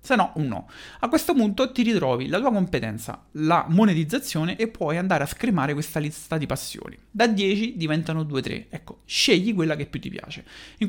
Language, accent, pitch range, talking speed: Italian, native, 135-190 Hz, 195 wpm